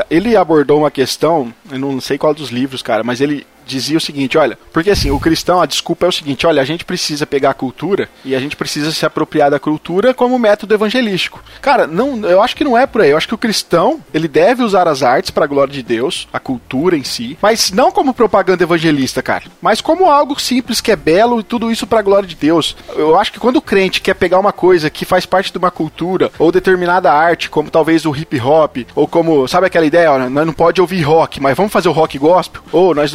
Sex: male